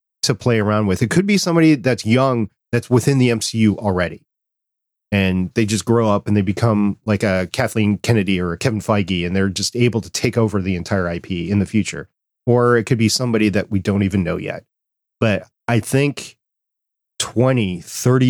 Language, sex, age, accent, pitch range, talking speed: English, male, 30-49, American, 100-125 Hz, 195 wpm